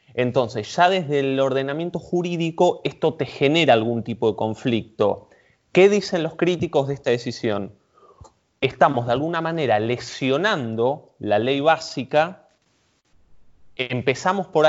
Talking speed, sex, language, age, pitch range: 125 wpm, male, Spanish, 20-39, 115-160 Hz